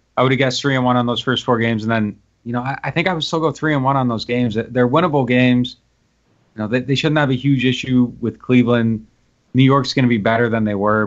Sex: male